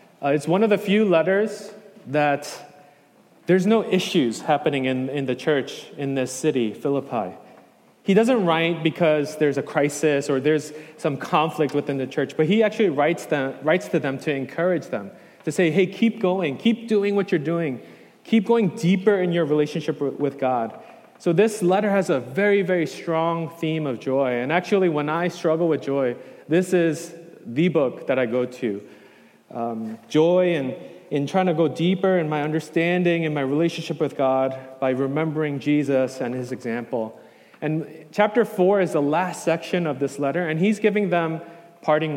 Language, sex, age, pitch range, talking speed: English, male, 30-49, 140-180 Hz, 180 wpm